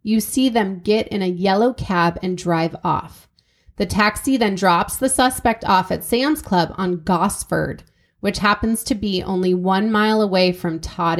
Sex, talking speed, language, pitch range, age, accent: female, 175 wpm, English, 185-240 Hz, 30-49, American